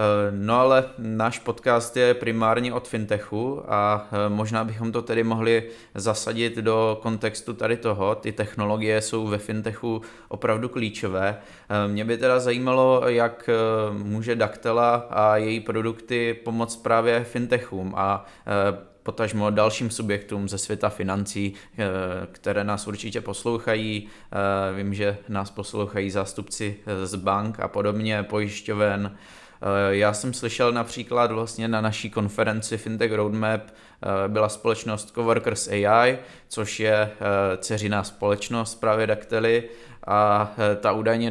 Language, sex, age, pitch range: Czech, male, 20-39, 100-115 Hz